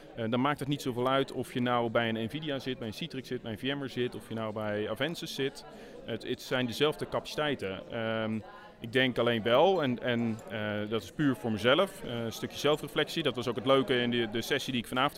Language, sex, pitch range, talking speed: Dutch, male, 115-140 Hz, 245 wpm